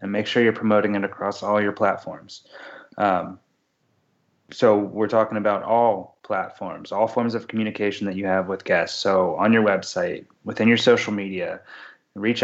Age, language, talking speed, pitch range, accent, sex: 20-39, English, 170 wpm, 95-110 Hz, American, male